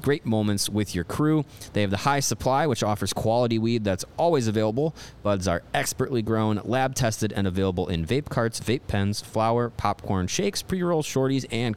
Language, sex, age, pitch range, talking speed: English, male, 30-49, 100-130 Hz, 185 wpm